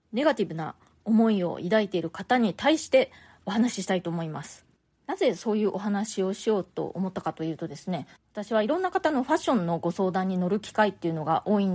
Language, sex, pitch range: Japanese, female, 175-250 Hz